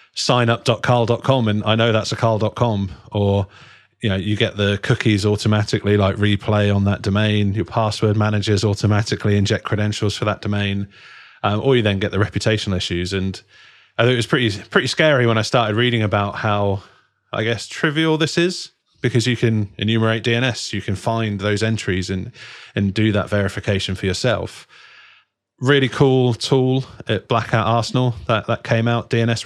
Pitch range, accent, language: 100-120 Hz, British, English